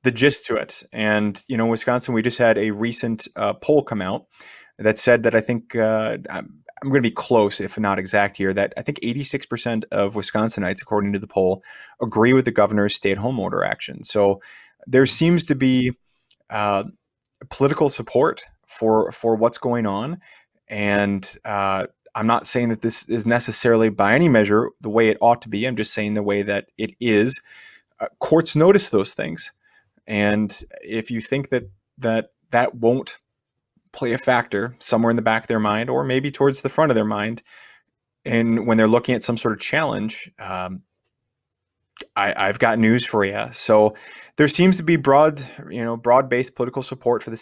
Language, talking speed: English, 190 wpm